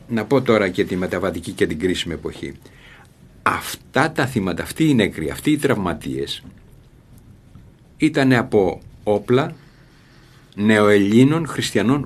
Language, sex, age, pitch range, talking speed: Greek, male, 60-79, 105-145 Hz, 120 wpm